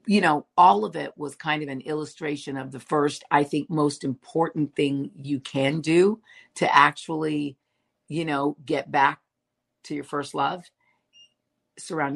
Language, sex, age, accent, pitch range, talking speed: English, female, 50-69, American, 140-170 Hz, 160 wpm